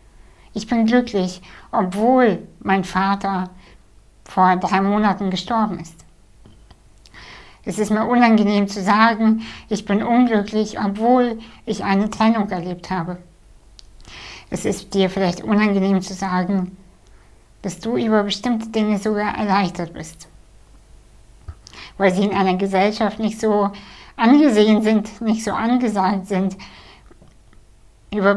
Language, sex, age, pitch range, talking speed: German, female, 60-79, 185-220 Hz, 115 wpm